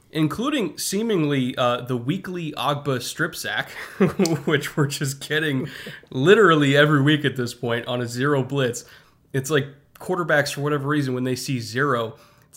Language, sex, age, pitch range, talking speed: English, male, 20-39, 125-150 Hz, 160 wpm